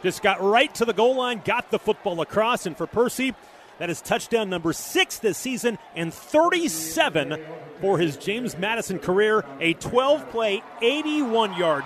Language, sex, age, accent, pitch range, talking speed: English, male, 30-49, American, 155-230 Hz, 155 wpm